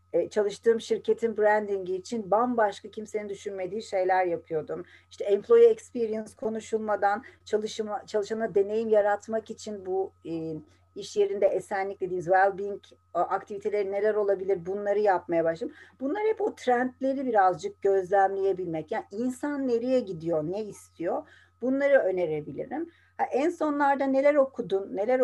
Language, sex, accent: Turkish, female, native